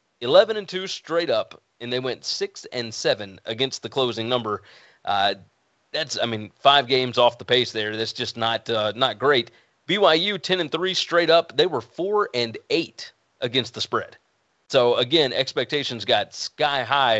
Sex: male